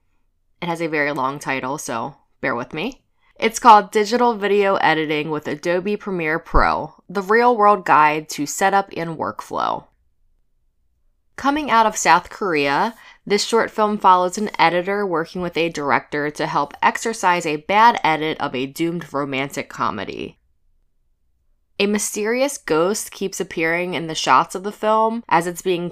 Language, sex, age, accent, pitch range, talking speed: English, female, 20-39, American, 145-210 Hz, 155 wpm